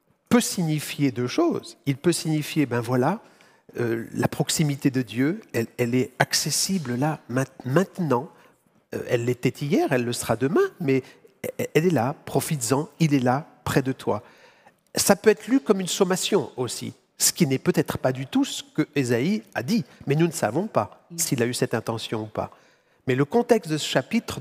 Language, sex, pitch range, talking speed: French, male, 125-165 Hz, 185 wpm